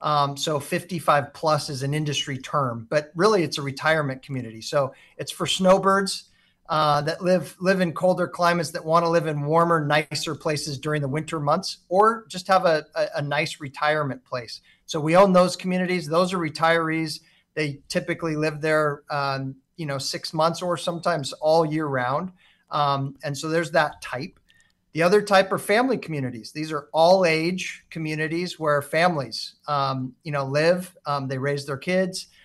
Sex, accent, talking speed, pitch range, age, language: male, American, 175 wpm, 145-175 Hz, 40-59, English